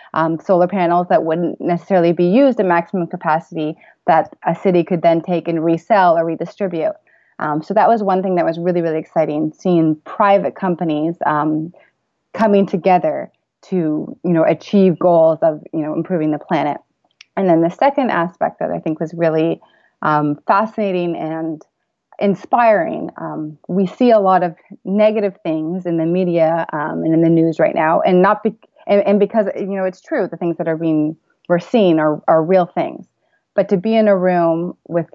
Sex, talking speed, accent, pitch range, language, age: female, 185 wpm, American, 160-190 Hz, English, 30-49